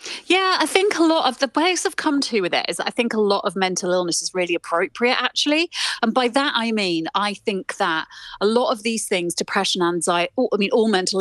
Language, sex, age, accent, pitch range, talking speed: English, female, 30-49, British, 180-235 Hz, 235 wpm